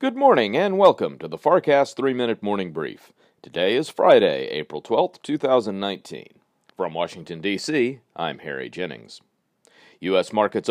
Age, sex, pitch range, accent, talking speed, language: 40-59, male, 90-140 Hz, American, 135 wpm, English